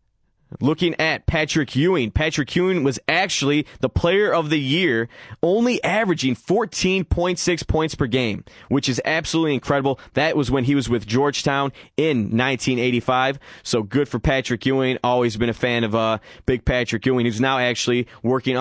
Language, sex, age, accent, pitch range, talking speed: English, male, 20-39, American, 120-155 Hz, 160 wpm